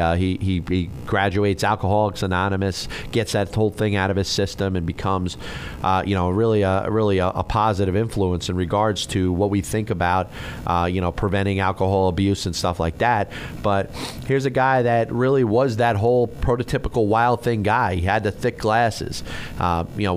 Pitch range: 95-115 Hz